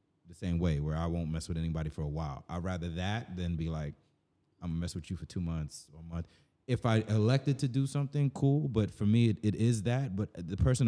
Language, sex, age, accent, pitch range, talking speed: English, male, 30-49, American, 90-115 Hz, 255 wpm